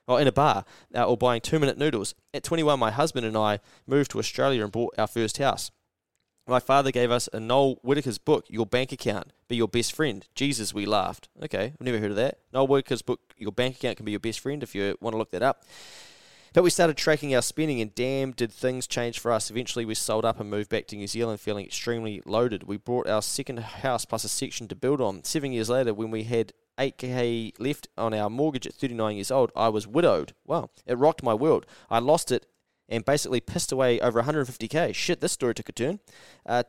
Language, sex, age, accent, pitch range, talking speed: English, male, 20-39, Australian, 110-130 Hz, 230 wpm